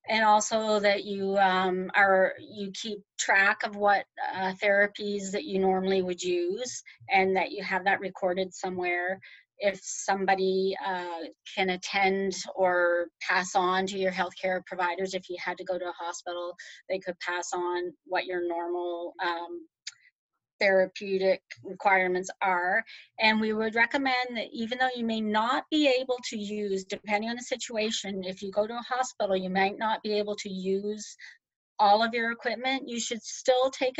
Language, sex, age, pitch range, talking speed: English, female, 30-49, 190-220 Hz, 170 wpm